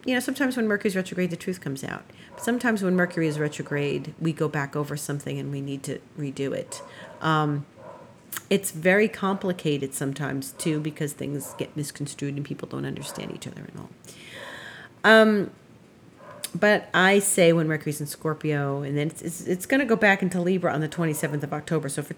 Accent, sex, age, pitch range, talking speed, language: American, female, 40-59, 145-180 Hz, 195 wpm, English